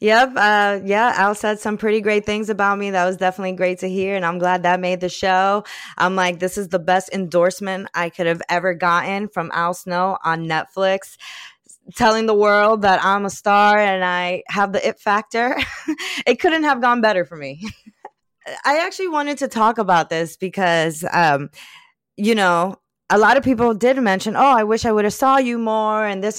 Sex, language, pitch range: female, English, 180-230 Hz